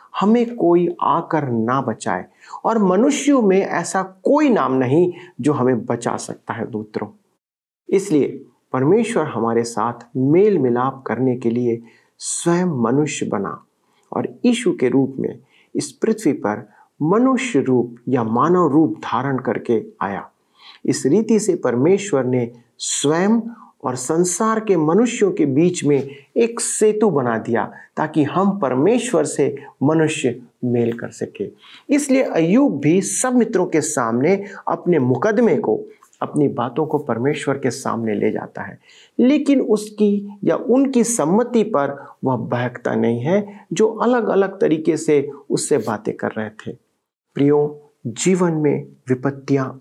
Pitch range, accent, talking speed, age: 130-215 Hz, native, 135 wpm, 50-69